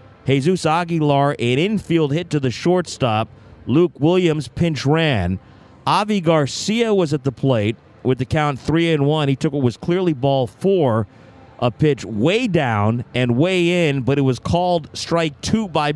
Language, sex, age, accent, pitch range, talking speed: English, male, 40-59, American, 120-160 Hz, 170 wpm